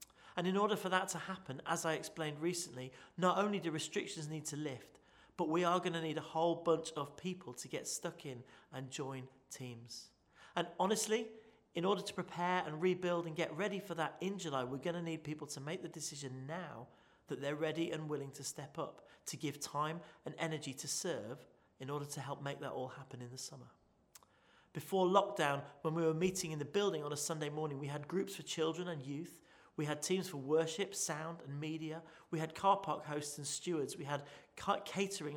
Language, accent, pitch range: English, British, 145-175 Hz